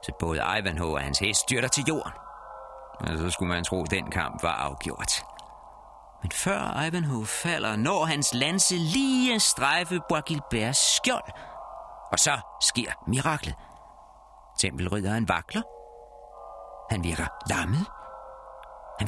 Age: 50-69